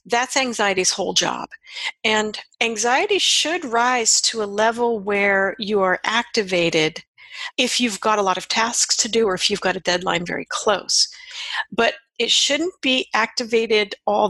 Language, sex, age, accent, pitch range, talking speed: English, female, 50-69, American, 190-235 Hz, 160 wpm